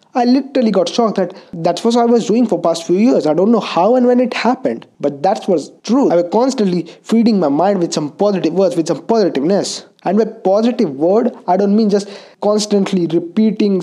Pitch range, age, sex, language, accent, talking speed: 170-220 Hz, 20-39, male, English, Indian, 215 wpm